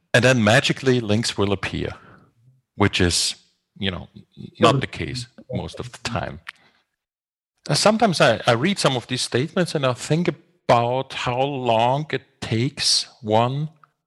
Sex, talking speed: male, 145 wpm